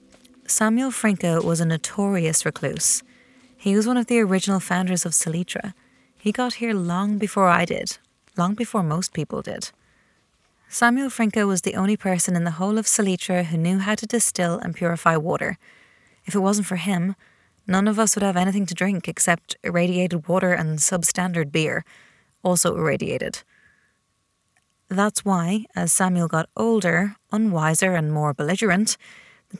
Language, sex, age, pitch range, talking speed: English, female, 30-49, 170-220 Hz, 160 wpm